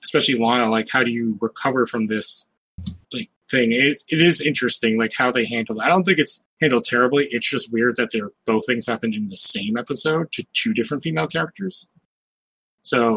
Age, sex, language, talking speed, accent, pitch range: 30-49, male, English, 200 wpm, American, 115-145 Hz